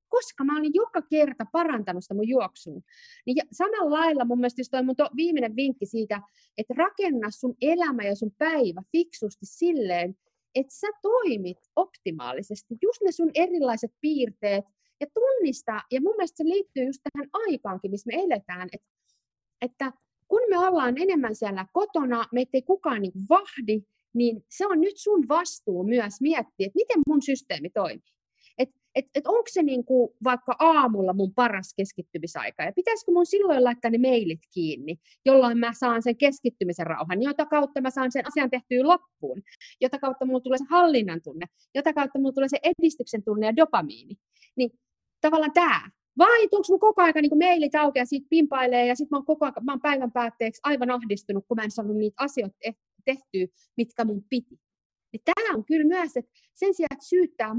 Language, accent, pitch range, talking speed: Finnish, native, 230-330 Hz, 175 wpm